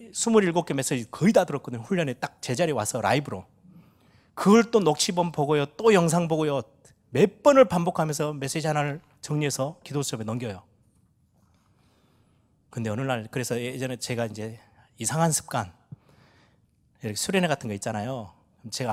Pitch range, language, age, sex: 125-185 Hz, Korean, 30-49, male